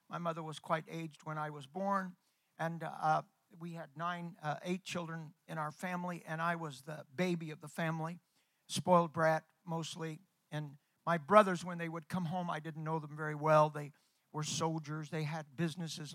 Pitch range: 150-175 Hz